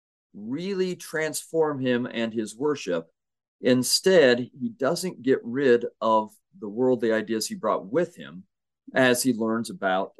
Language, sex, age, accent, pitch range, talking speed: English, male, 40-59, American, 110-130 Hz, 140 wpm